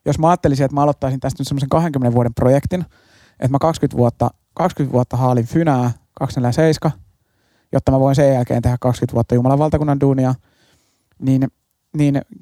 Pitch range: 120-140 Hz